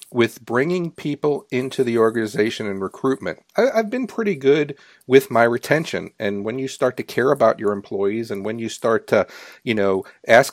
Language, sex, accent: English, male, American